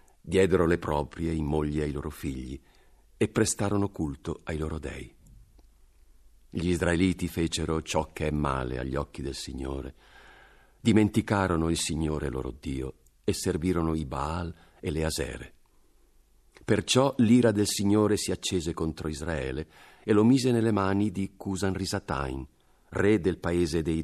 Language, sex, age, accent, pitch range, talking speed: Italian, male, 50-69, native, 75-95 Hz, 140 wpm